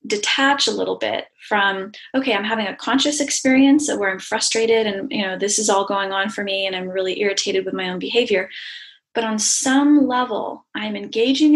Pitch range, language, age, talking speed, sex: 200-255 Hz, English, 20-39, 195 wpm, female